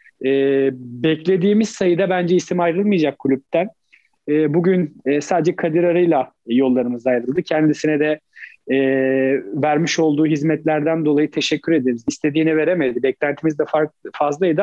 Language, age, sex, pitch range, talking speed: Turkish, 40-59, male, 145-170 Hz, 115 wpm